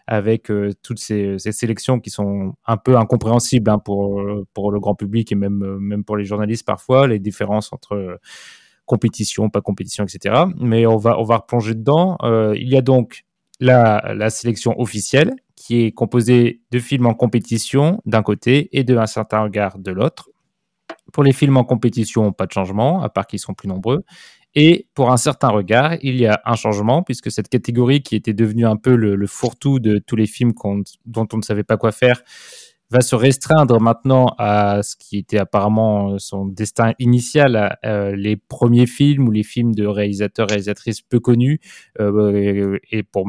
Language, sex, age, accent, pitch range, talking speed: French, male, 20-39, French, 105-125 Hz, 190 wpm